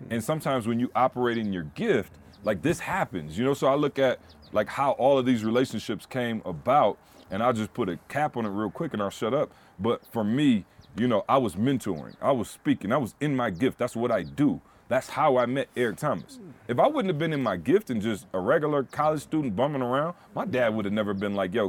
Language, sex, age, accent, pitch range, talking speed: English, male, 30-49, American, 110-145 Hz, 245 wpm